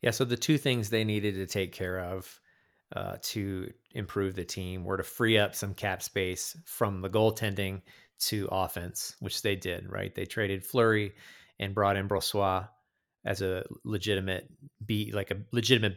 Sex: male